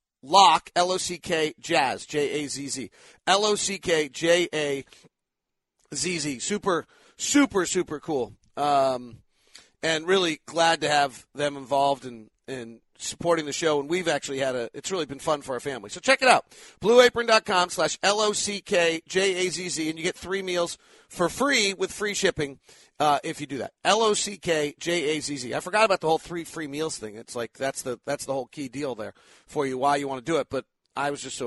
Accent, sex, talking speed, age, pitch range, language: American, male, 185 wpm, 40-59, 140-180 Hz, English